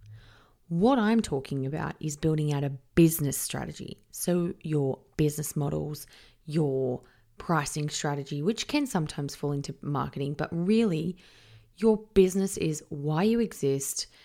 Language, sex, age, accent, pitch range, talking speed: English, female, 20-39, Australian, 140-195 Hz, 130 wpm